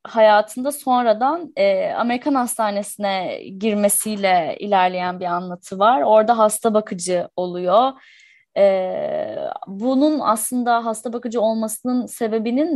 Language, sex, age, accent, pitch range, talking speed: Turkish, female, 10-29, native, 195-250 Hz, 100 wpm